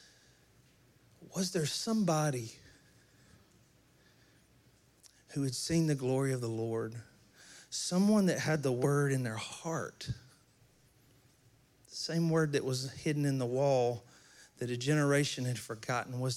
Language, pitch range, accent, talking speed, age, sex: English, 125-165 Hz, American, 125 wpm, 40-59, male